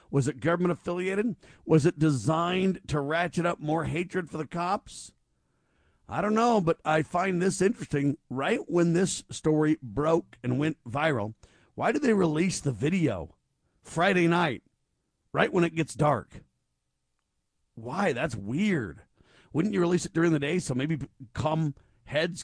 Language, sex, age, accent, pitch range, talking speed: English, male, 50-69, American, 140-175 Hz, 150 wpm